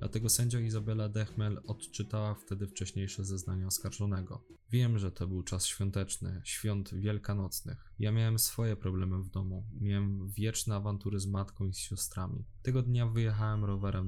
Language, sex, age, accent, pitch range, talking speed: Polish, male, 10-29, native, 95-115 Hz, 145 wpm